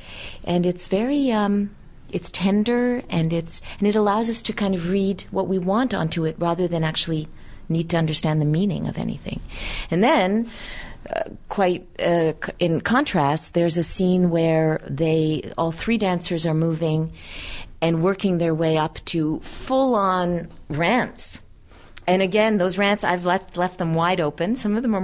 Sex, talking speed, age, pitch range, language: female, 170 wpm, 40-59, 150-190 Hz, English